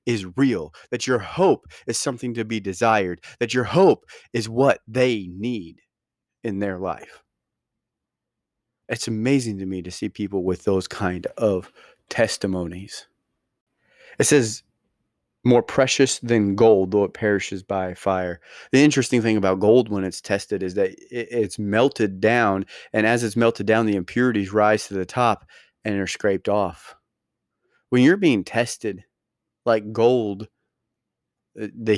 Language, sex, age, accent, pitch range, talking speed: English, male, 30-49, American, 95-120 Hz, 145 wpm